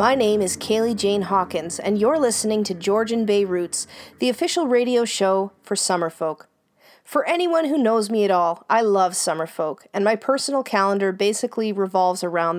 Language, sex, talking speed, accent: English, female, 180 wpm, American